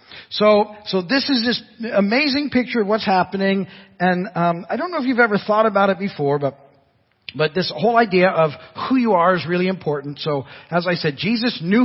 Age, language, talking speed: 50-69, English, 205 wpm